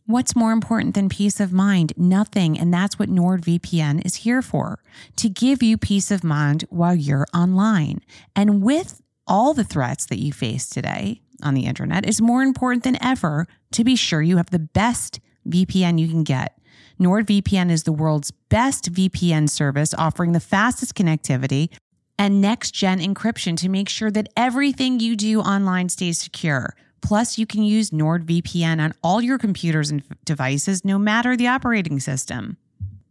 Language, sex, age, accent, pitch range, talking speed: English, female, 30-49, American, 155-215 Hz, 165 wpm